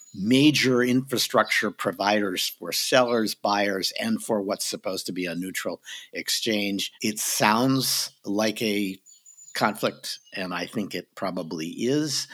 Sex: male